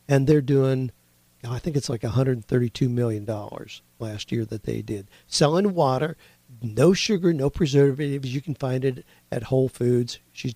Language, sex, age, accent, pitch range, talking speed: English, male, 50-69, American, 120-145 Hz, 160 wpm